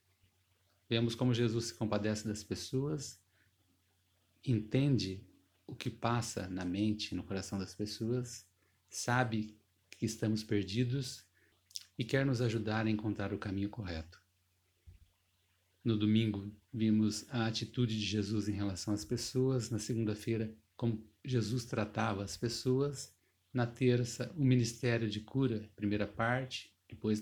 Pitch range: 95-120 Hz